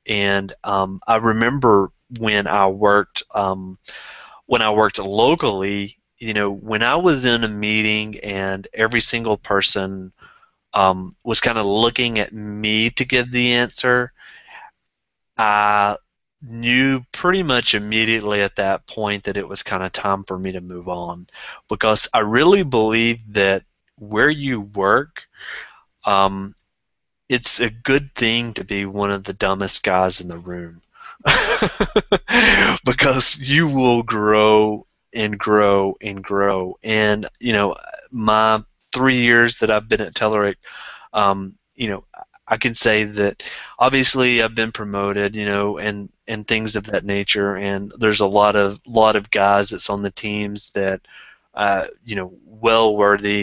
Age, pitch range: 30-49, 100-115 Hz